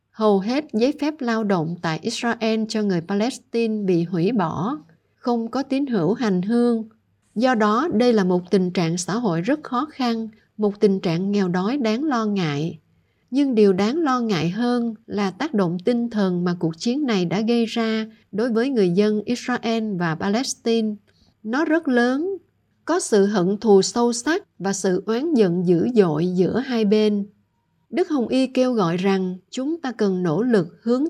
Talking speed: 185 wpm